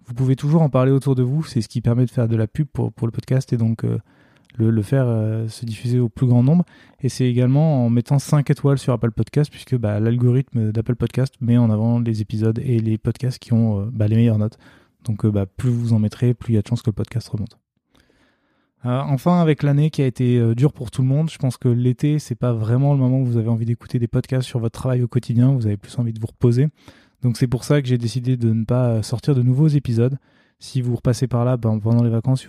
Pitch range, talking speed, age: 115-135 Hz, 270 wpm, 20-39